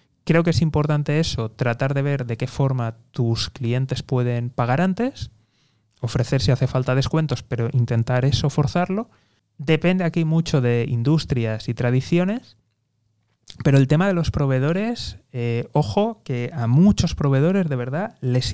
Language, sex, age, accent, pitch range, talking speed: Spanish, male, 20-39, Spanish, 120-155 Hz, 150 wpm